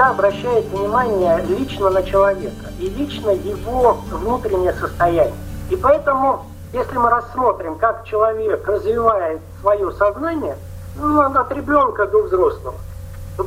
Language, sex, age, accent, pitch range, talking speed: Russian, male, 50-69, native, 190-310 Hz, 115 wpm